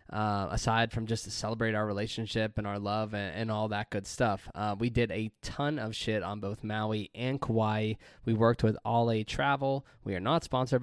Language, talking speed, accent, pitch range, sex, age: English, 215 wpm, American, 105-125 Hz, male, 20-39